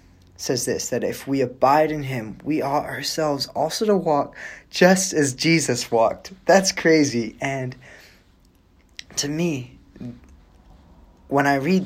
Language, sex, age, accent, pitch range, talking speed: English, male, 20-39, American, 85-130 Hz, 130 wpm